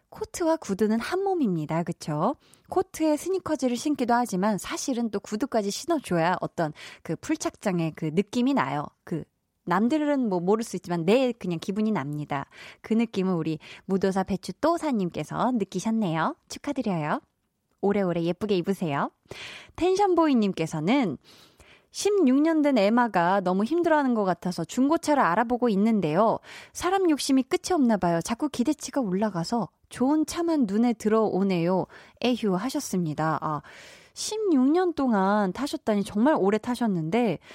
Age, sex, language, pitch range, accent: 20-39, female, Korean, 180-270 Hz, native